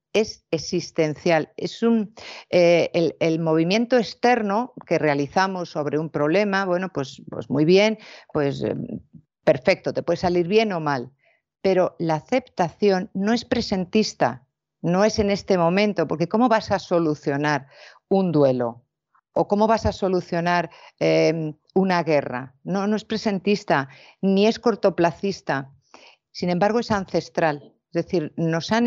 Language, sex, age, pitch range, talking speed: Spanish, female, 50-69, 150-195 Hz, 145 wpm